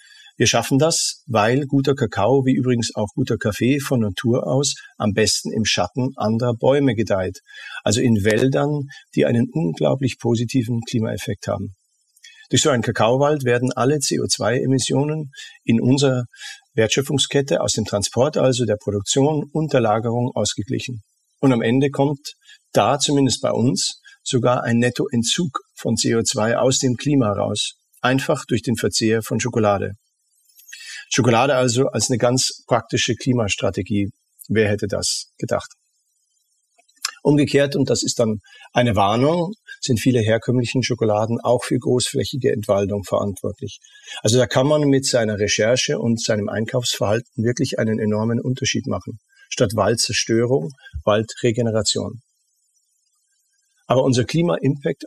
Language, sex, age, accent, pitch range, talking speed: German, male, 50-69, German, 110-140 Hz, 130 wpm